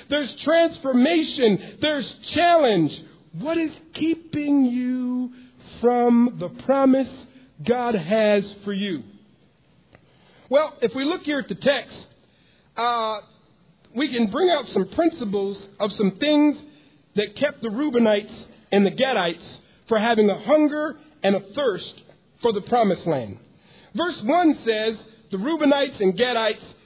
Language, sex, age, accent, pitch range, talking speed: English, male, 50-69, American, 220-295 Hz, 130 wpm